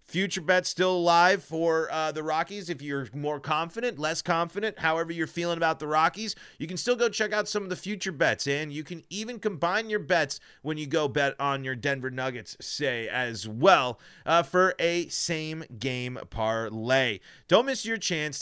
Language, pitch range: English, 130-175 Hz